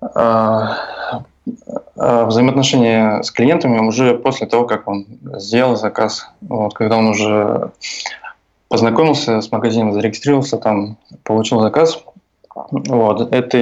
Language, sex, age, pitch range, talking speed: Russian, male, 20-39, 110-125 Hz, 100 wpm